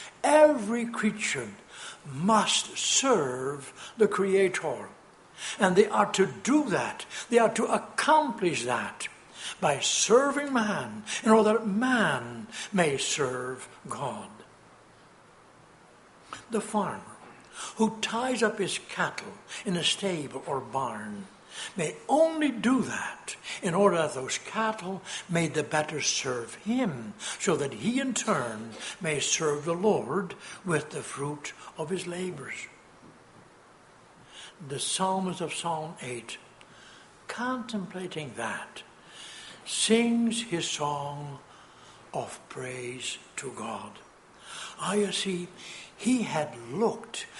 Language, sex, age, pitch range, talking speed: English, male, 60-79, 150-220 Hz, 110 wpm